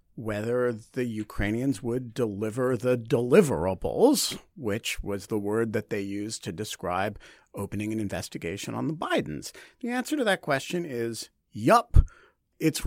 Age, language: 50-69, English